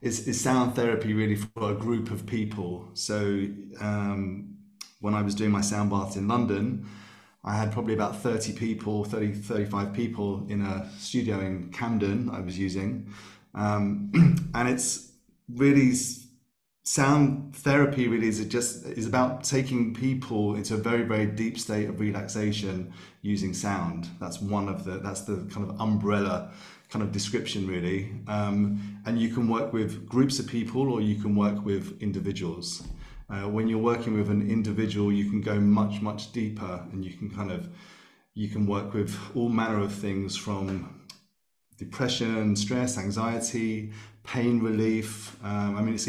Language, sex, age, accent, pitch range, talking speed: English, male, 30-49, British, 100-115 Hz, 165 wpm